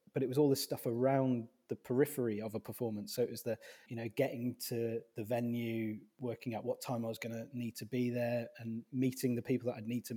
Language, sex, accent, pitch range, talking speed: English, male, British, 115-130 Hz, 250 wpm